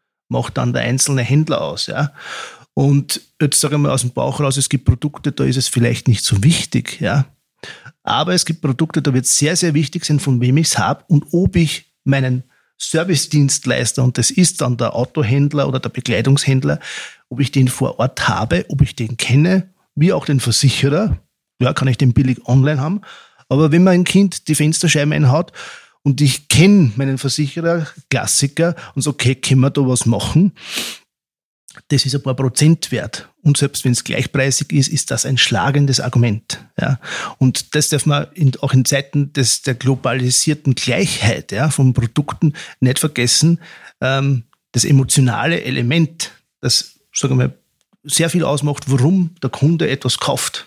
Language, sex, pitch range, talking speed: German, male, 130-155 Hz, 180 wpm